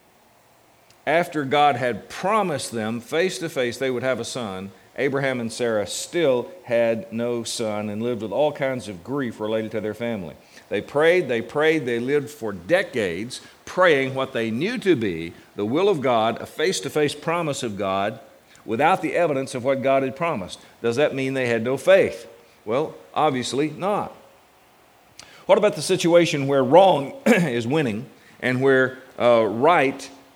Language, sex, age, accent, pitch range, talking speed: English, male, 50-69, American, 115-150 Hz, 160 wpm